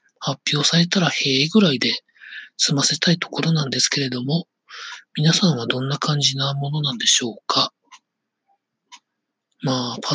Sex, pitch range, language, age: male, 140-200 Hz, Japanese, 40-59